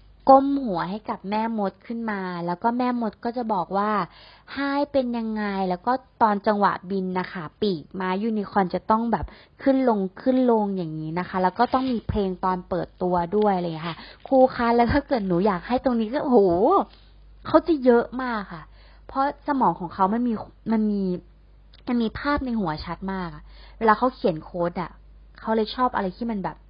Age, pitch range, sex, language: 20-39, 180-230 Hz, female, English